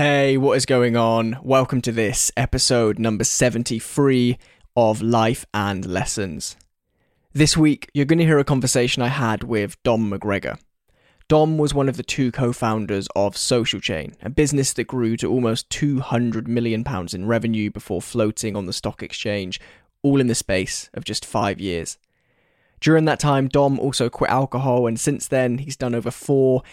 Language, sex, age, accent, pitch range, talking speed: English, male, 10-29, British, 110-130 Hz, 175 wpm